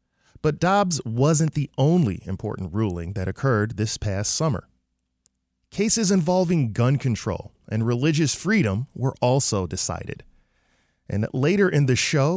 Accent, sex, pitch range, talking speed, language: American, male, 105-155 Hz, 130 wpm, English